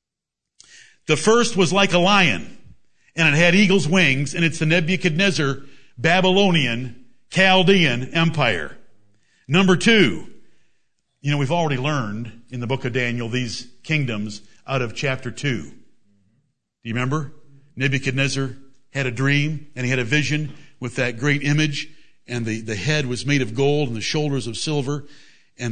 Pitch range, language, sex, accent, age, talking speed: 125-150 Hz, English, male, American, 60-79, 155 wpm